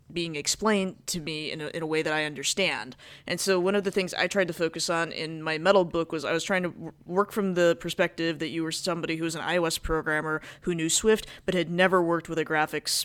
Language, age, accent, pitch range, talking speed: English, 20-39, American, 155-180 Hz, 250 wpm